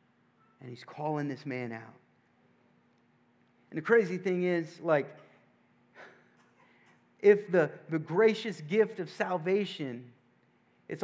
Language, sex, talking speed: English, male, 110 wpm